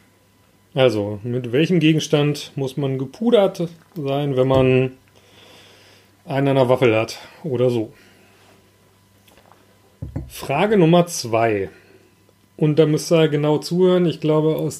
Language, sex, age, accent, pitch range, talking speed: German, male, 30-49, German, 115-160 Hz, 115 wpm